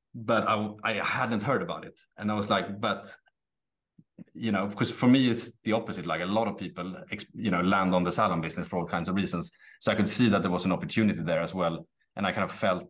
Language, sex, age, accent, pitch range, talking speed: English, male, 30-49, Norwegian, 90-105 Hz, 250 wpm